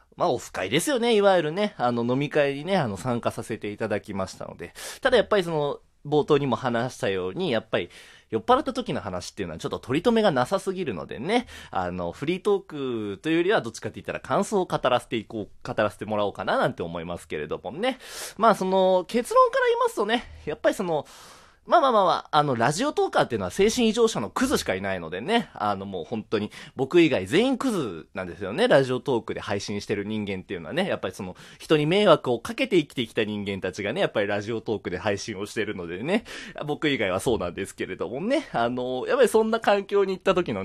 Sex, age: male, 20-39